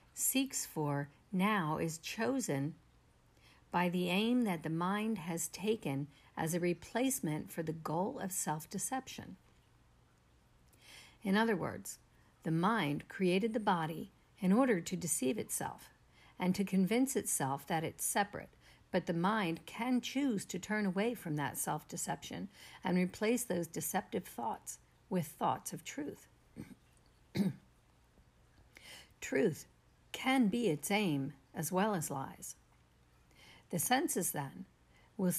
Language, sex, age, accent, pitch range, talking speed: English, female, 50-69, American, 150-210 Hz, 125 wpm